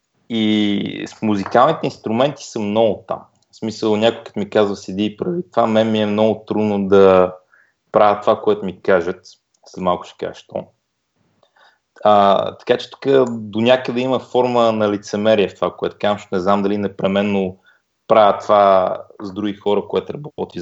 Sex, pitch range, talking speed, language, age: male, 100-115 Hz, 165 wpm, Bulgarian, 30-49